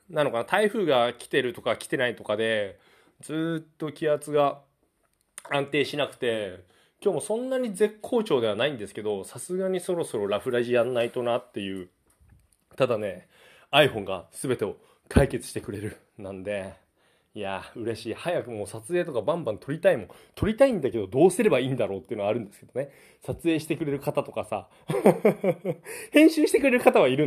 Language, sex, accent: Japanese, male, native